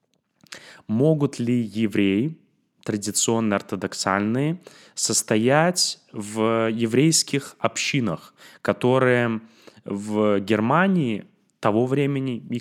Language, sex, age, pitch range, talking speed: Russian, male, 20-39, 110-140 Hz, 65 wpm